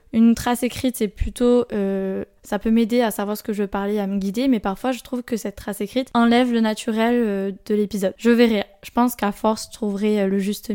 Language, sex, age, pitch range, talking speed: French, female, 10-29, 205-240 Hz, 240 wpm